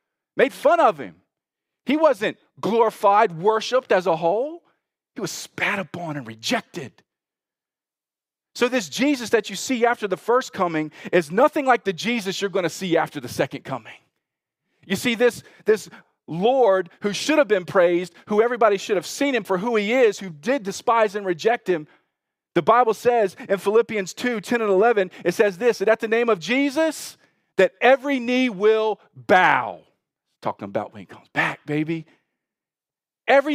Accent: American